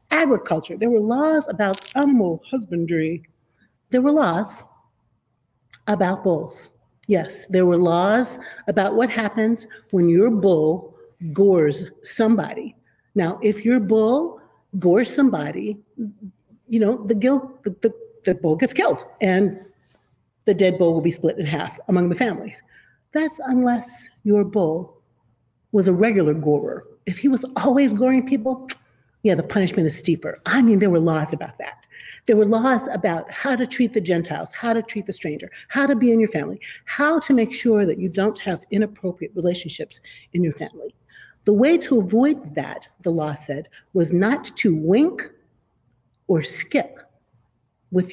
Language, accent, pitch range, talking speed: English, American, 170-240 Hz, 155 wpm